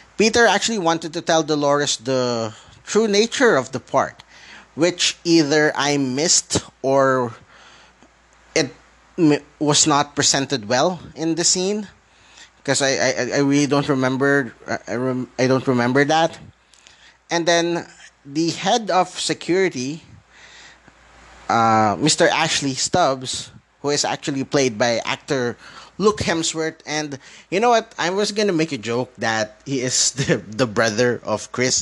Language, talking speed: English, 140 wpm